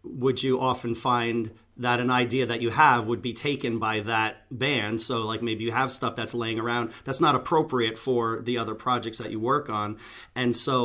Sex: male